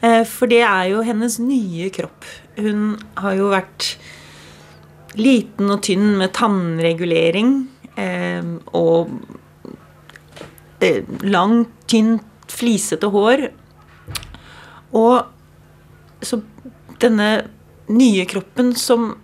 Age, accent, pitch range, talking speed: 30-49, Swedish, 185-235 Hz, 85 wpm